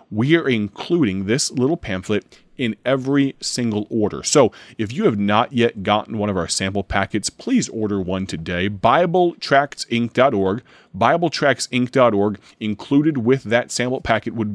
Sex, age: male, 30-49